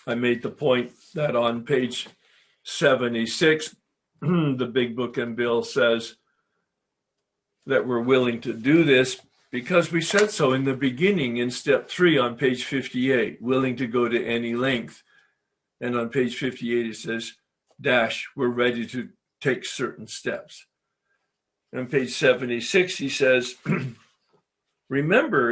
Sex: male